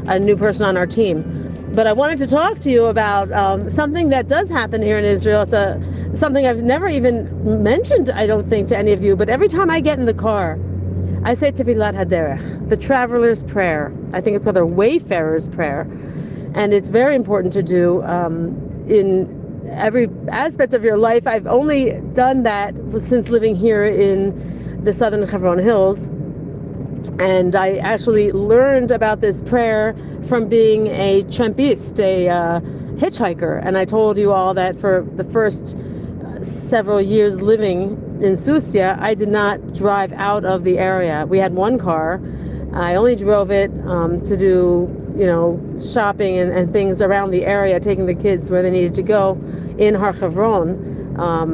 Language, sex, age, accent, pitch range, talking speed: English, female, 40-59, American, 180-225 Hz, 175 wpm